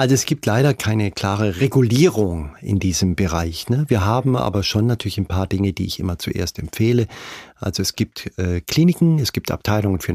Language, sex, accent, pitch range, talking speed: German, male, German, 95-120 Hz, 195 wpm